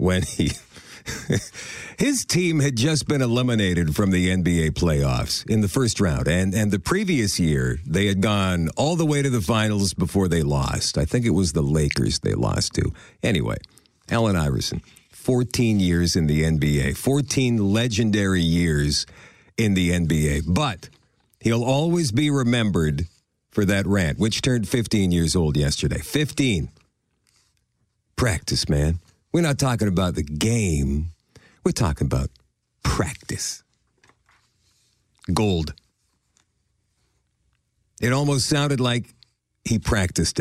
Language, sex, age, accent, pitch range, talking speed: English, male, 50-69, American, 90-120 Hz, 135 wpm